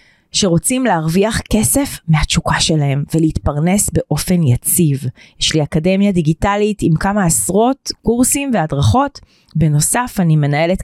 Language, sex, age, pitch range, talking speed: Hebrew, female, 30-49, 150-205 Hz, 110 wpm